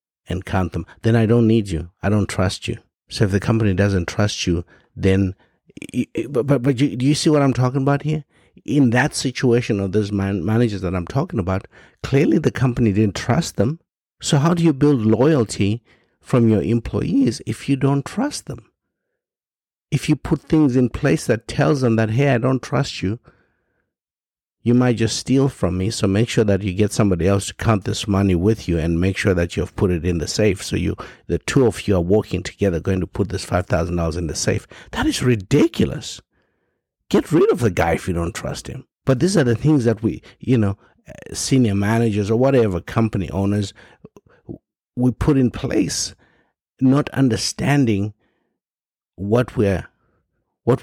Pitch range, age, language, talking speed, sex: 95-130 Hz, 60-79, English, 190 wpm, male